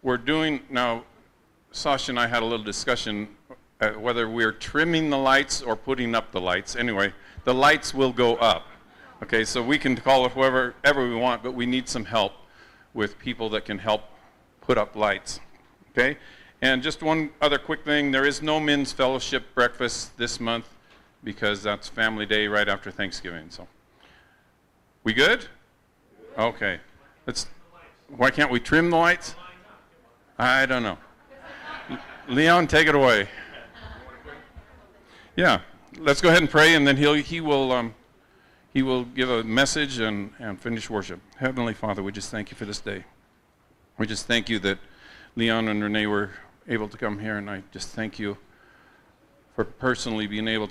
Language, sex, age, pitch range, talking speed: English, male, 50-69, 105-130 Hz, 170 wpm